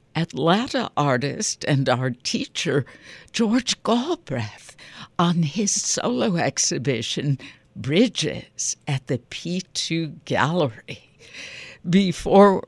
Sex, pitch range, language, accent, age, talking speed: female, 125-165 Hz, English, American, 60-79, 80 wpm